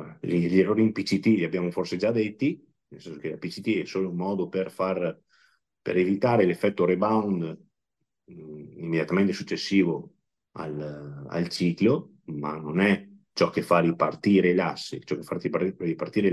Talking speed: 150 wpm